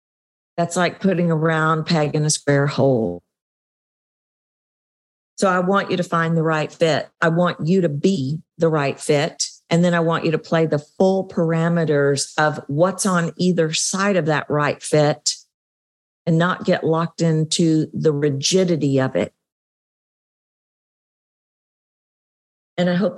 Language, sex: English, female